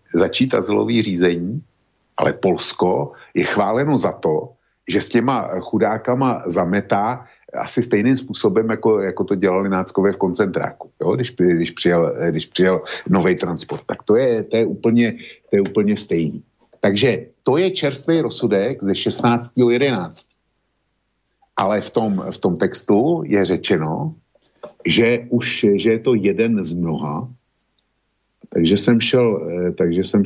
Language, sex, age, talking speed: Slovak, male, 50-69, 135 wpm